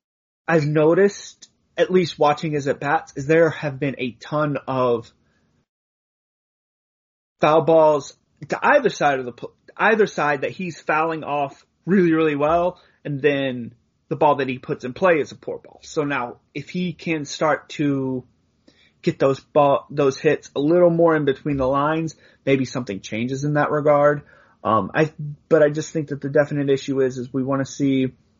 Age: 30-49